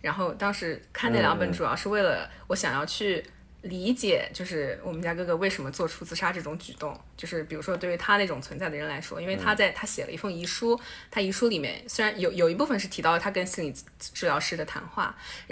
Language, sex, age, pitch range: Chinese, female, 20-39, 165-205 Hz